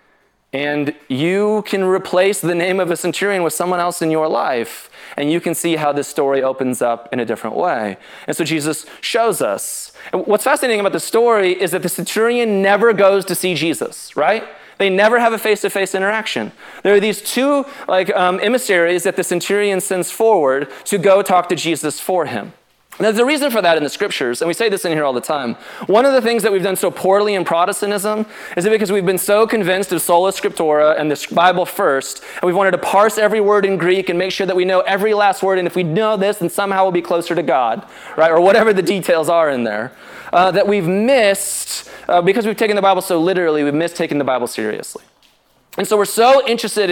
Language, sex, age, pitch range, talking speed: English, male, 20-39, 170-210 Hz, 230 wpm